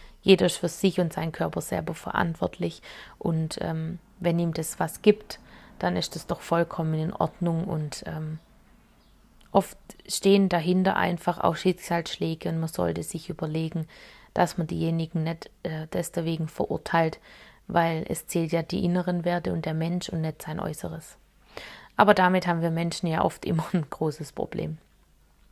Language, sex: German, female